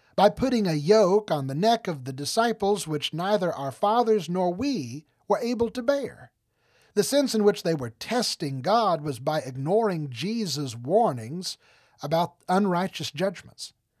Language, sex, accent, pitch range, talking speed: English, male, American, 140-210 Hz, 155 wpm